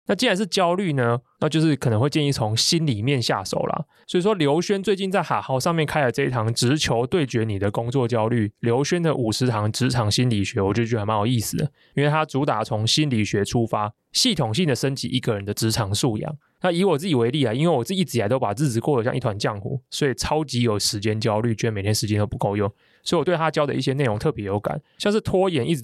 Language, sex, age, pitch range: Chinese, male, 20-39, 115-155 Hz